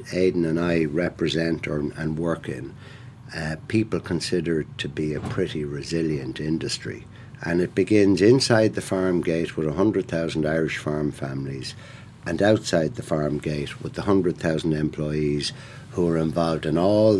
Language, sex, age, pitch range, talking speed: English, male, 60-79, 80-120 Hz, 165 wpm